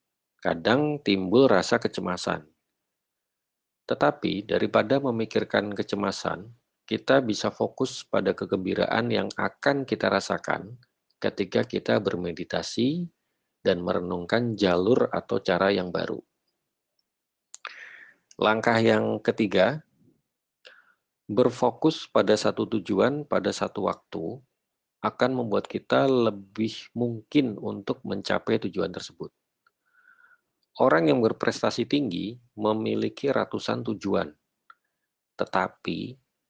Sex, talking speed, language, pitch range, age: male, 90 wpm, Indonesian, 100-130 Hz, 50-69